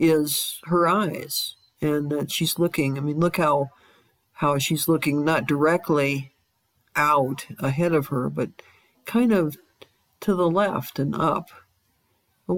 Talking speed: 145 wpm